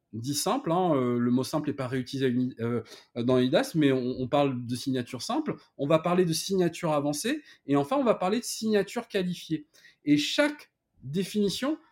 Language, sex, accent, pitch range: French, male, French, 130-185 Hz